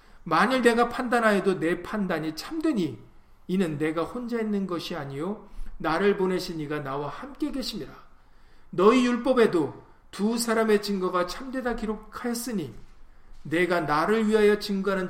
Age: 40-59